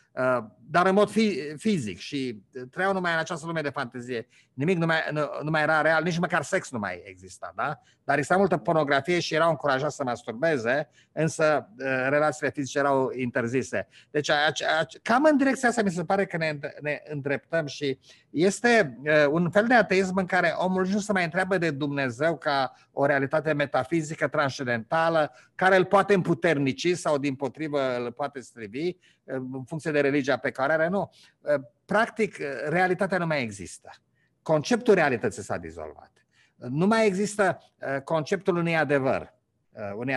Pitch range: 135-180 Hz